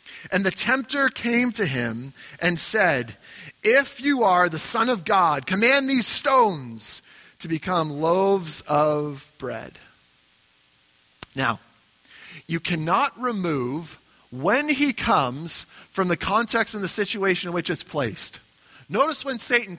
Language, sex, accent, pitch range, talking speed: English, male, American, 150-200 Hz, 130 wpm